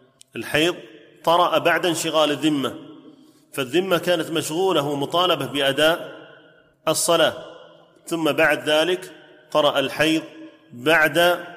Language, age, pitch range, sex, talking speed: Arabic, 30-49, 135-160 Hz, male, 90 wpm